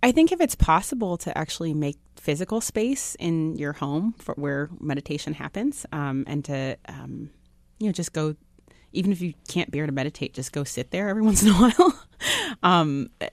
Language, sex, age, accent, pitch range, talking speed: English, female, 30-49, American, 145-180 Hz, 185 wpm